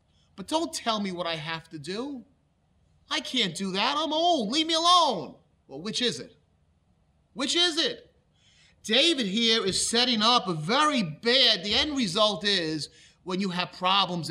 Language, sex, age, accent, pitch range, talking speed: English, male, 30-49, American, 160-225 Hz, 170 wpm